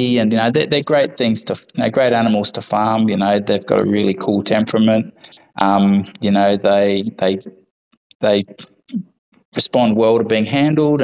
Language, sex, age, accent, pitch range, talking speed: English, male, 20-39, Australian, 100-115 Hz, 175 wpm